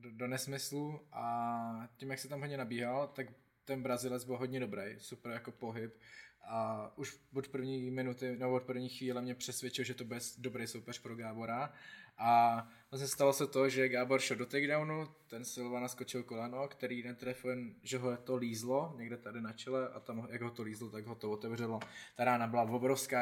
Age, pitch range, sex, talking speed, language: 20-39, 115-130 Hz, male, 190 wpm, Czech